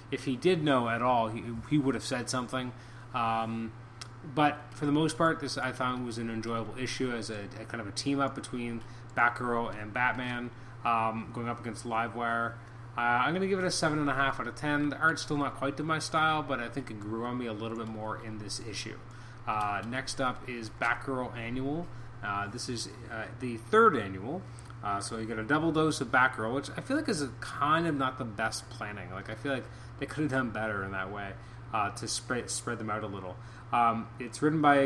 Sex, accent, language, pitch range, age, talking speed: male, American, English, 115-135 Hz, 30-49, 225 wpm